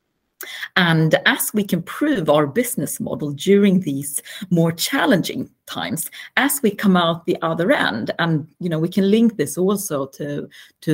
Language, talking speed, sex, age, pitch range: Danish, 165 wpm, female, 40-59, 155-190 Hz